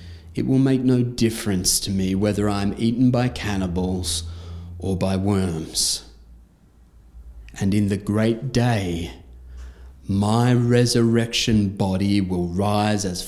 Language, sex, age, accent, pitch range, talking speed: English, male, 30-49, Australian, 90-115 Hz, 115 wpm